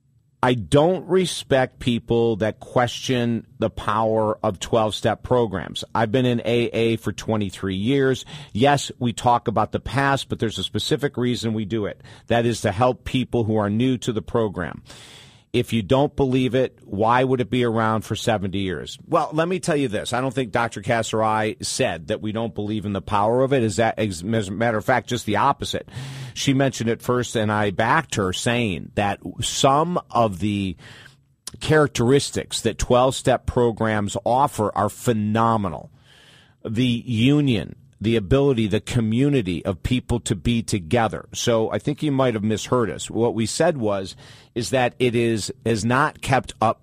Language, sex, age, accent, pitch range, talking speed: English, male, 50-69, American, 110-125 Hz, 180 wpm